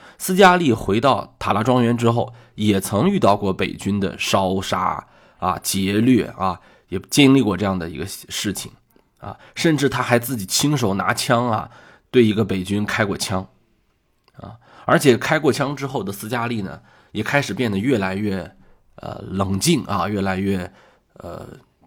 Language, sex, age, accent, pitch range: Chinese, male, 20-39, native, 95-120 Hz